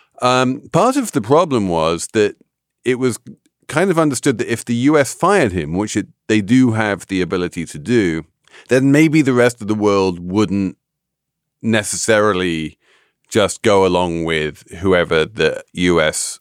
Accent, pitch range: British, 85-120 Hz